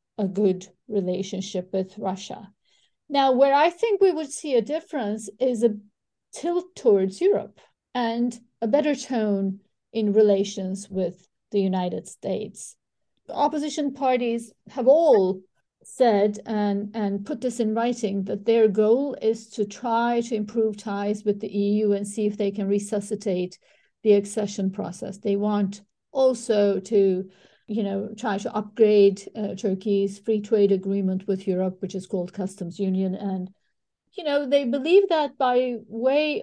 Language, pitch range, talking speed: English, 200-240 Hz, 150 wpm